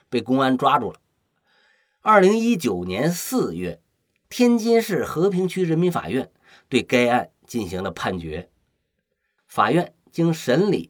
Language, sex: Chinese, male